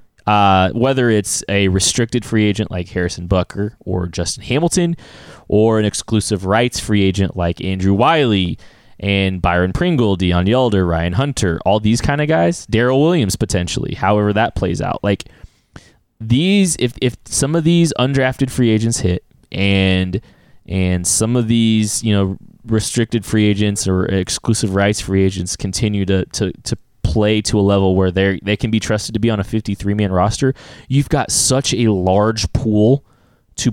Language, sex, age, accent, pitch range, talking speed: English, male, 20-39, American, 95-135 Hz, 165 wpm